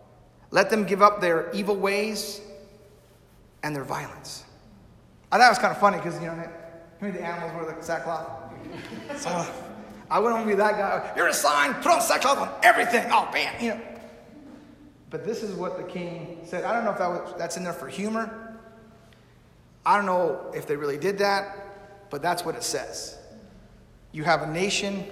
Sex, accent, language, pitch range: male, American, English, 155-200 Hz